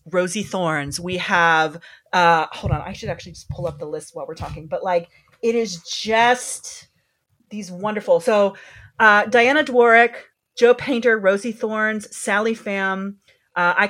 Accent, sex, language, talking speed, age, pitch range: American, female, English, 160 wpm, 30-49, 180-230 Hz